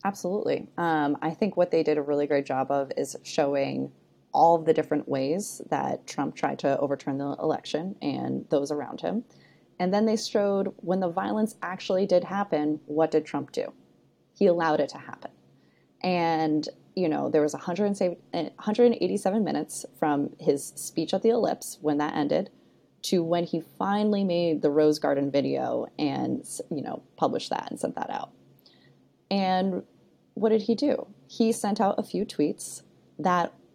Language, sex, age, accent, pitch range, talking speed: English, female, 20-39, American, 145-195 Hz, 165 wpm